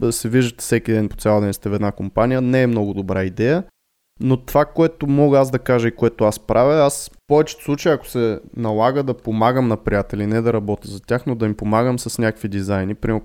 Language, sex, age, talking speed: Bulgarian, male, 20-39, 235 wpm